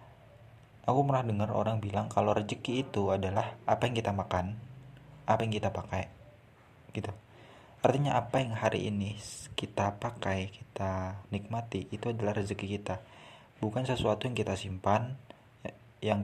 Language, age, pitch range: Indonesian, 20-39, 100-115 Hz